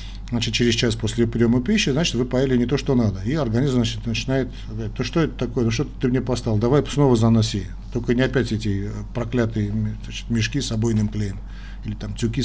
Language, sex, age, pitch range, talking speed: Russian, male, 50-69, 110-140 Hz, 205 wpm